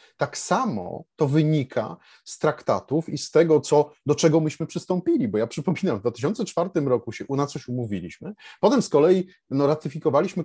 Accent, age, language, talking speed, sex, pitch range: native, 30-49, Polish, 165 wpm, male, 135-175 Hz